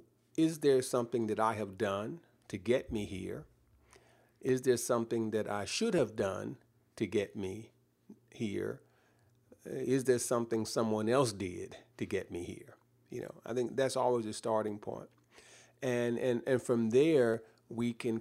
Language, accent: English, American